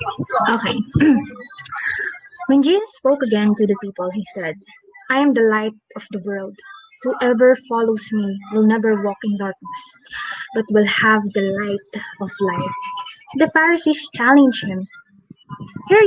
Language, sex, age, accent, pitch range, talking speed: Filipino, female, 20-39, native, 210-275 Hz, 140 wpm